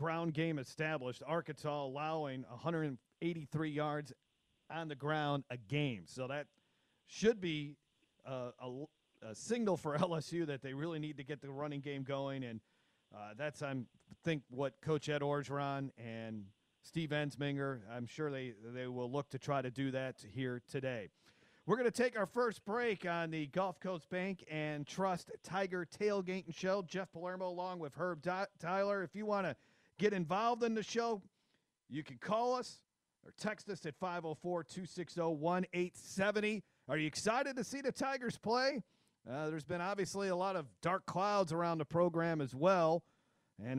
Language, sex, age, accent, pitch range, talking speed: English, male, 40-59, American, 145-190 Hz, 170 wpm